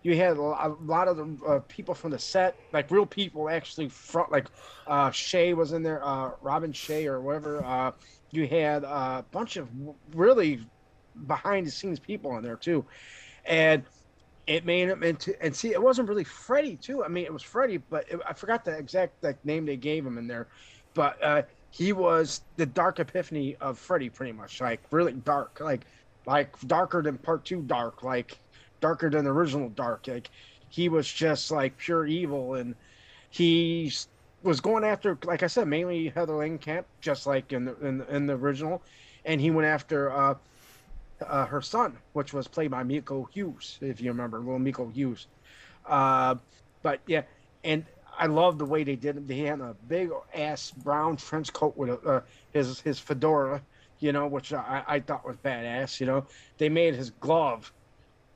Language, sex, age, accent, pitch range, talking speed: English, male, 30-49, American, 130-165 Hz, 185 wpm